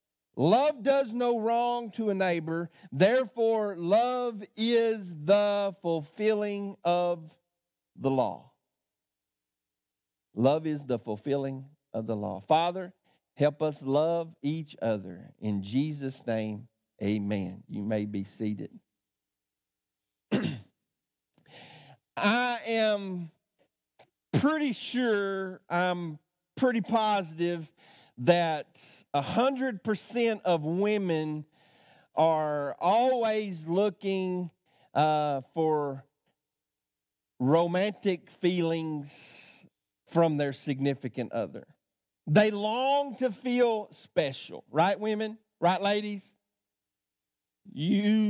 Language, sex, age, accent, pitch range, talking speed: English, male, 50-69, American, 135-215 Hz, 85 wpm